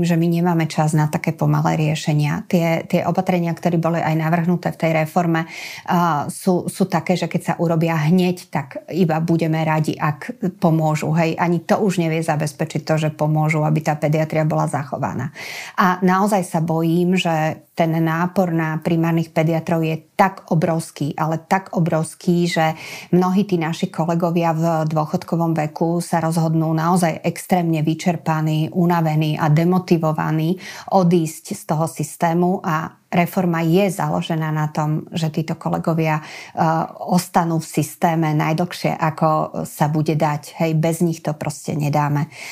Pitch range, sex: 155-180 Hz, female